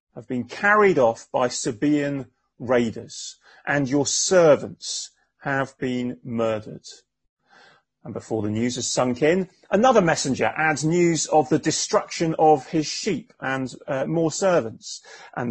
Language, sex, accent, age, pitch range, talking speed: English, male, British, 30-49, 115-155 Hz, 135 wpm